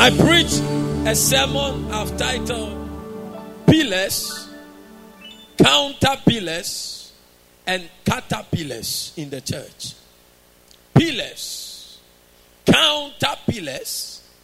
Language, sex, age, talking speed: English, male, 50-69, 60 wpm